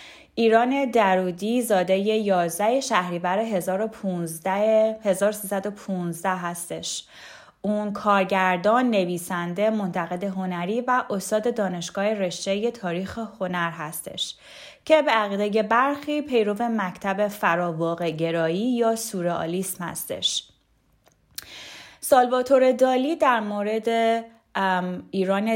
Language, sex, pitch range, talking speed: Persian, female, 185-230 Hz, 80 wpm